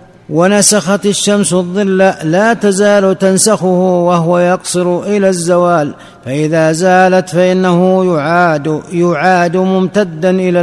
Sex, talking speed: male, 95 wpm